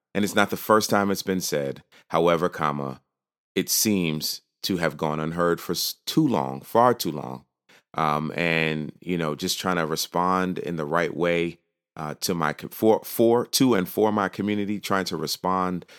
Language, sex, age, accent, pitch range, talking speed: English, male, 30-49, American, 80-100 Hz, 180 wpm